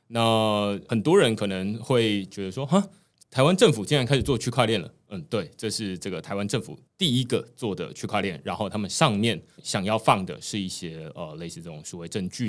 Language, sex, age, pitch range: Chinese, male, 20-39, 95-130 Hz